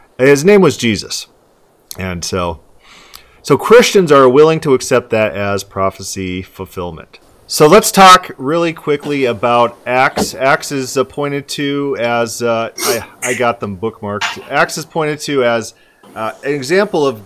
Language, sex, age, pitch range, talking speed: English, male, 30-49, 100-145 Hz, 150 wpm